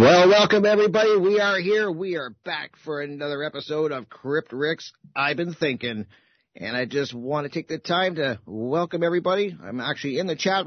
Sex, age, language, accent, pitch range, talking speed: male, 50-69, English, American, 125-155 Hz, 190 wpm